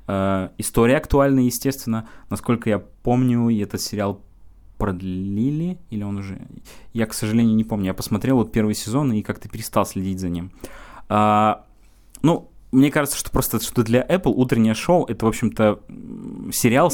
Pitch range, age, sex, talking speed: 100-120 Hz, 20-39, male, 155 wpm